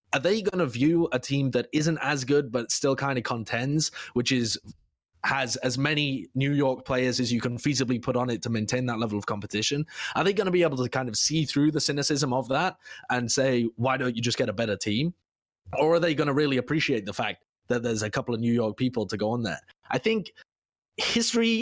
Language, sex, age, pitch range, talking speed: English, male, 20-39, 115-145 Hz, 240 wpm